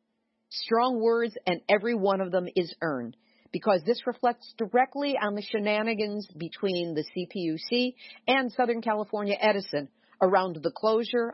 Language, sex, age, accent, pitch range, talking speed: English, female, 50-69, American, 180-230 Hz, 140 wpm